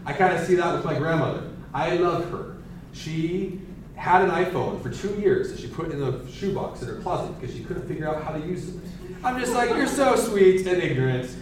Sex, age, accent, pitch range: male, 30-49, American, 130-175 Hz